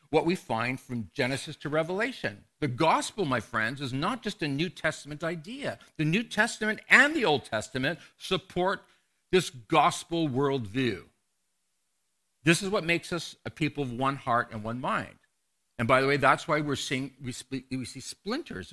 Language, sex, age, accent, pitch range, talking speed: English, male, 60-79, American, 120-165 Hz, 170 wpm